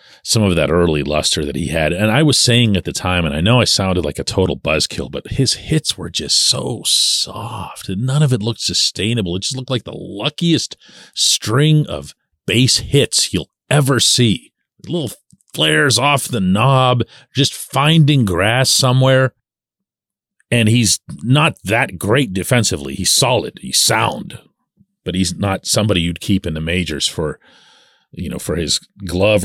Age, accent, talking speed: 40-59, American, 170 wpm